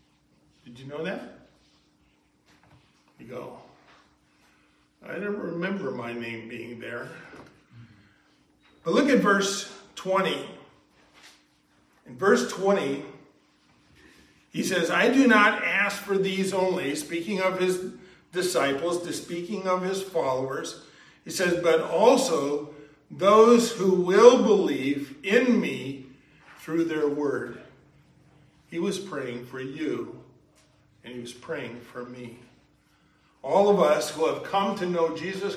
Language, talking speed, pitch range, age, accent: English, 120 wpm, 145-190 Hz, 50-69, American